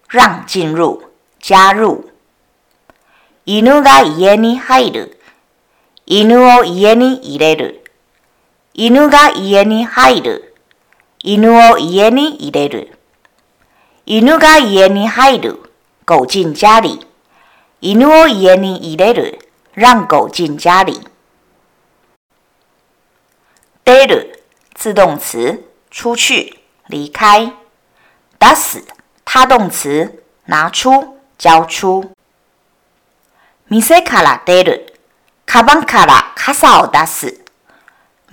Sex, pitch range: female, 185-290 Hz